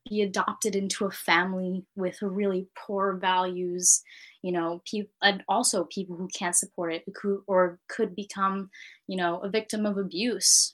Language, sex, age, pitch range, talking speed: English, female, 10-29, 185-220 Hz, 150 wpm